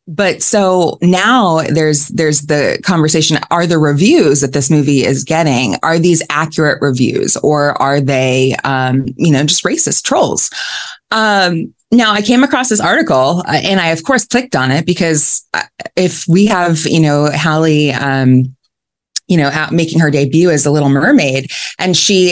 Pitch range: 140-180 Hz